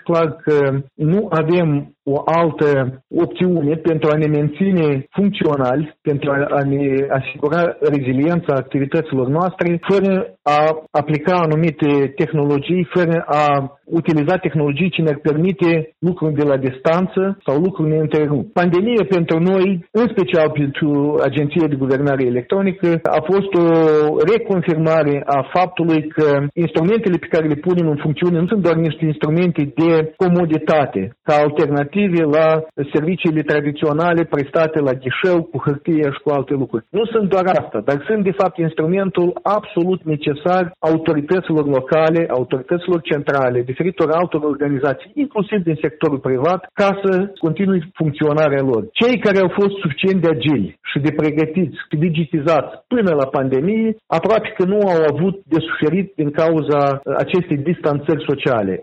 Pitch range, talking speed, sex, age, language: 145-180 Hz, 135 wpm, male, 40-59, Romanian